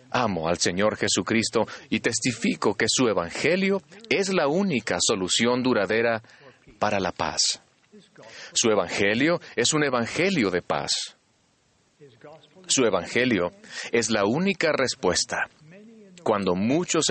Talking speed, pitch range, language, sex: 110 wpm, 115-180 Hz, Spanish, male